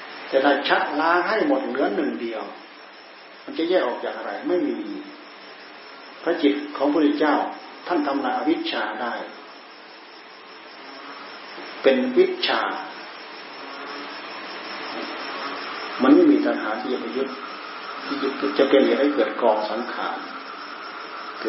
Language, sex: Thai, male